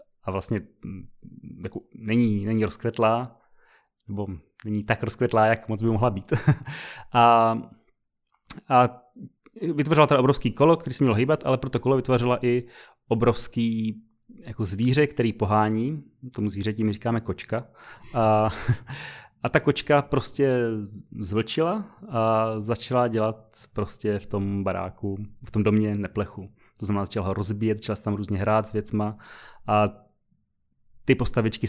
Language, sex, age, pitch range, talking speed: Czech, male, 30-49, 105-125 Hz, 135 wpm